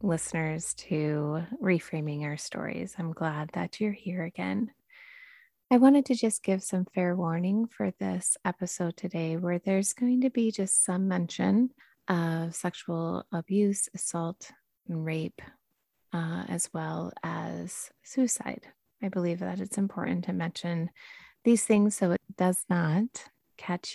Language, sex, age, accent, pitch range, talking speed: English, female, 30-49, American, 165-225 Hz, 140 wpm